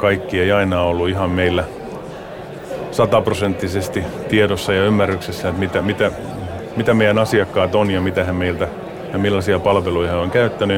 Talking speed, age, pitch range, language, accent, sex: 150 wpm, 30-49, 90-105 Hz, Finnish, native, male